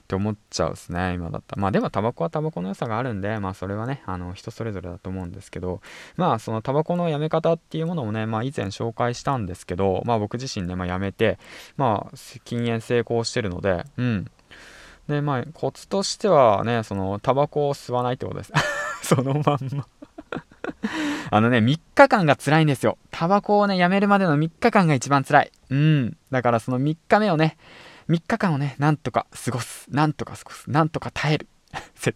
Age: 20-39